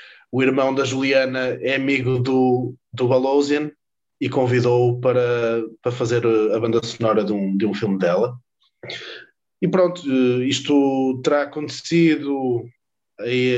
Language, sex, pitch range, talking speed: Portuguese, male, 115-135 Hz, 125 wpm